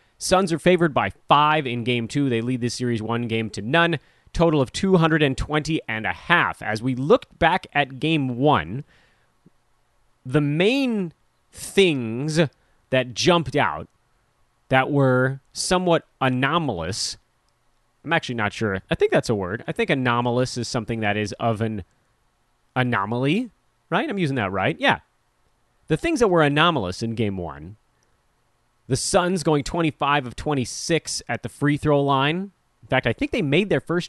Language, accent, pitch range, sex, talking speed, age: English, American, 120-155 Hz, male, 160 wpm, 30-49